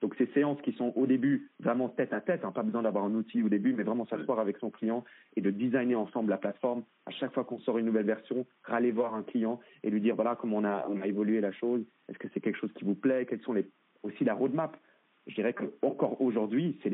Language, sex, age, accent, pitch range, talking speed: French, male, 40-59, French, 105-130 Hz, 260 wpm